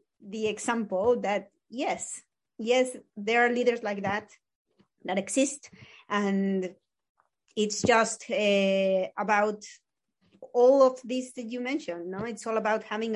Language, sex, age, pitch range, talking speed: English, female, 30-49, 200-235 Hz, 130 wpm